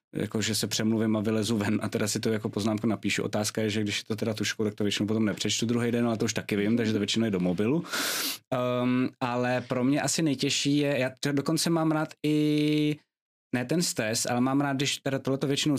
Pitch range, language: 110-130 Hz, Czech